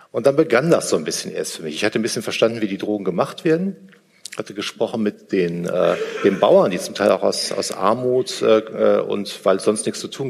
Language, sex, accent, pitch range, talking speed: German, male, German, 95-140 Hz, 250 wpm